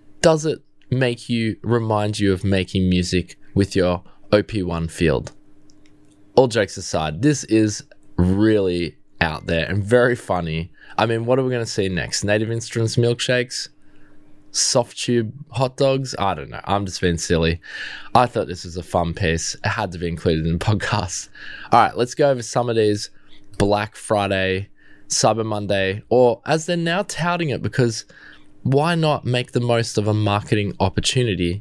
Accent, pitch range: Australian, 90-125 Hz